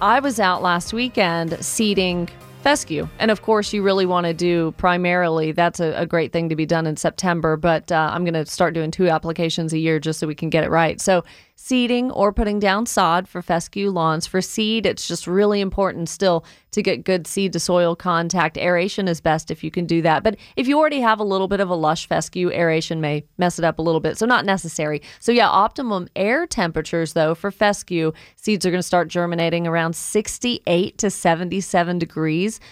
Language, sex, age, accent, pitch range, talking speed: English, female, 30-49, American, 165-200 Hz, 215 wpm